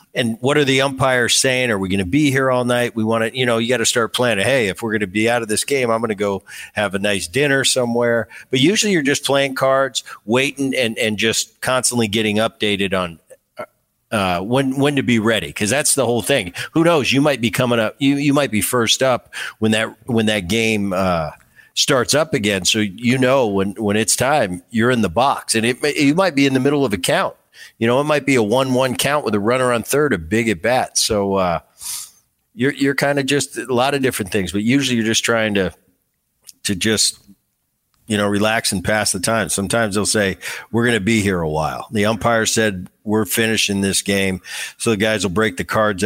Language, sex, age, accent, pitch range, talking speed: English, male, 50-69, American, 100-125 Hz, 235 wpm